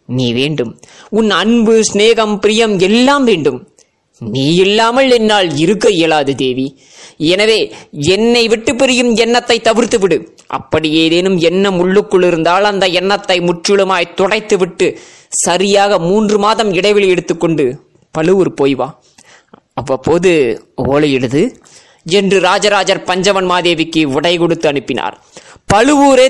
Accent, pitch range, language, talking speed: native, 165-245 Hz, Tamil, 105 wpm